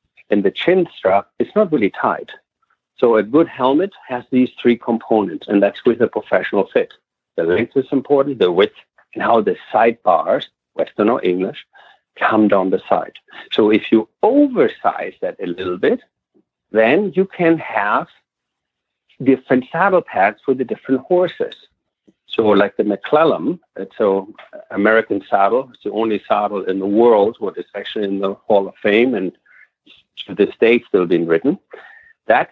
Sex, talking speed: male, 165 wpm